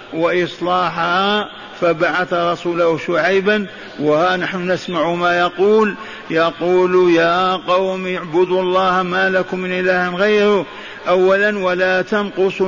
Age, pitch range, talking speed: 50-69, 170-185 Hz, 100 wpm